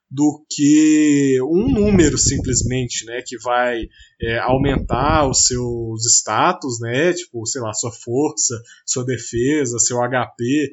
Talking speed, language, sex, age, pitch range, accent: 130 wpm, Portuguese, male, 20-39, 120-155 Hz, Brazilian